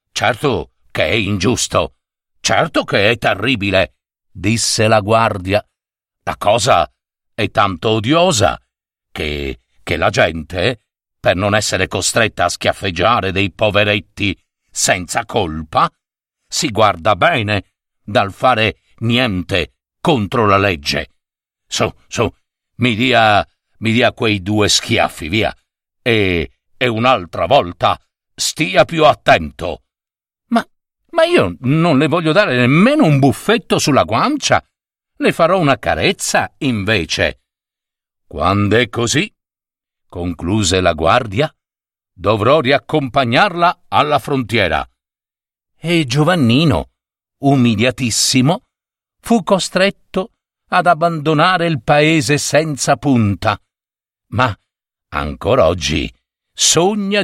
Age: 60-79